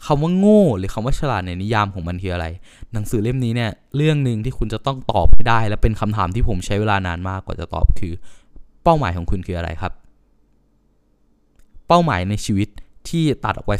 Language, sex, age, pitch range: Thai, male, 20-39, 90-130 Hz